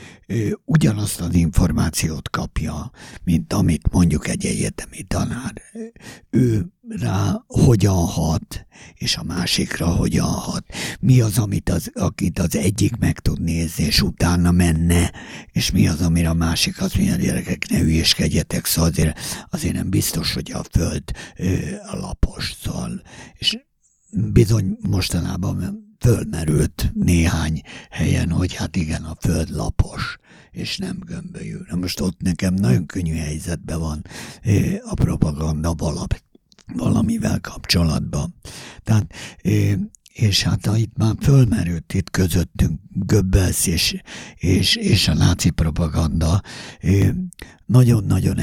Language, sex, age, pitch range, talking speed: Hungarian, male, 60-79, 80-110 Hz, 120 wpm